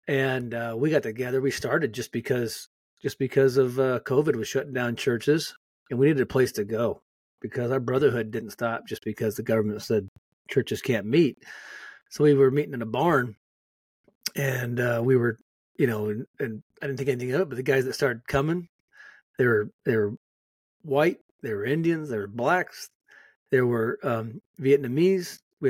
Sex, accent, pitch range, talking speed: male, American, 120-150 Hz, 190 wpm